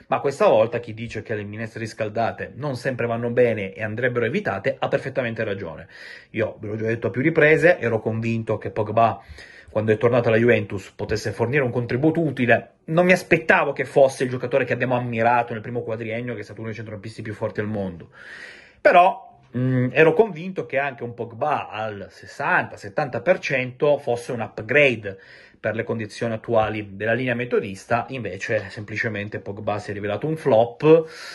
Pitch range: 105-125 Hz